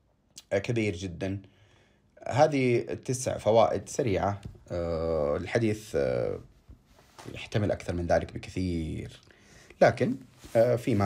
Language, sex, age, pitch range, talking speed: Arabic, male, 30-49, 90-110 Hz, 75 wpm